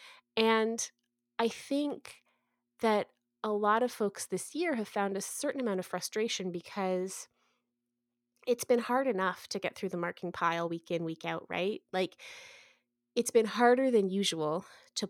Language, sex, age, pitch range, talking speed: English, female, 30-49, 170-230 Hz, 160 wpm